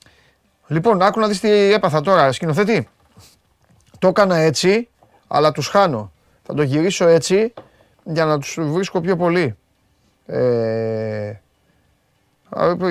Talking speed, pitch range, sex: 115 wpm, 115-160 Hz, male